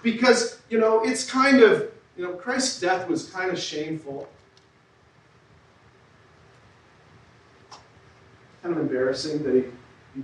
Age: 40-59